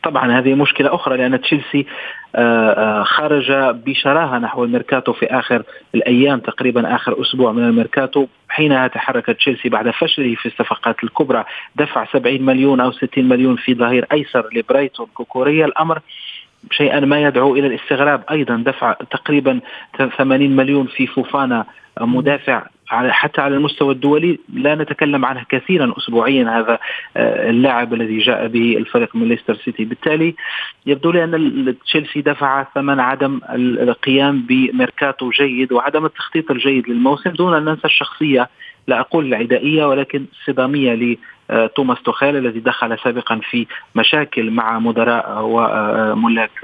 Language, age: Arabic, 40-59